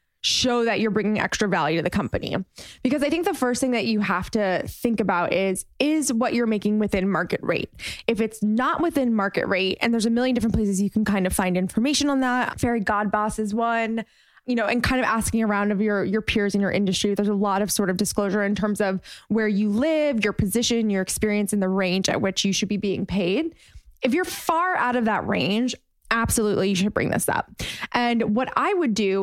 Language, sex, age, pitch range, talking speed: English, female, 20-39, 200-245 Hz, 230 wpm